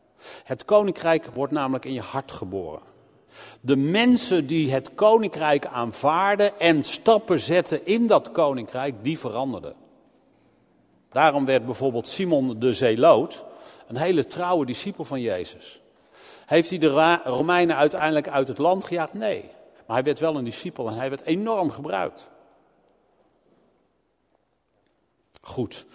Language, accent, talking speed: Dutch, Dutch, 130 wpm